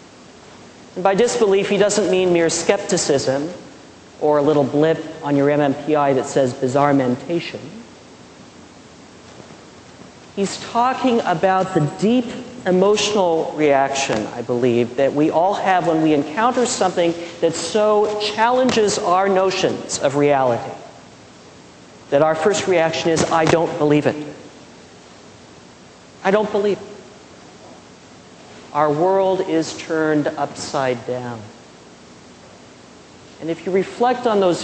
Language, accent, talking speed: English, American, 120 wpm